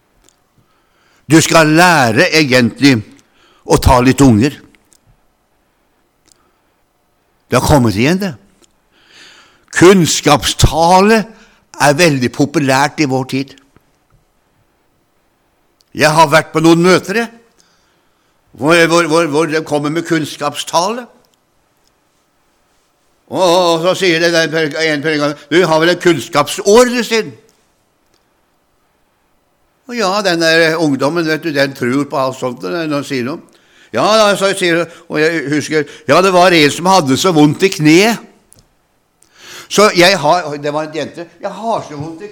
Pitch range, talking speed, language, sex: 150-195 Hz, 125 wpm, Danish, male